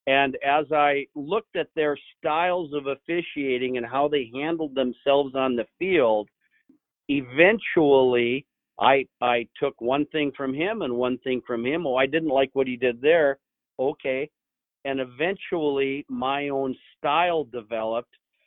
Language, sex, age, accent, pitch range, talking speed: English, male, 50-69, American, 130-155 Hz, 145 wpm